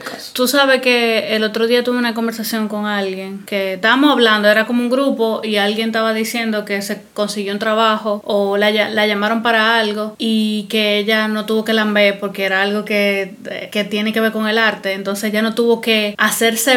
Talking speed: 210 wpm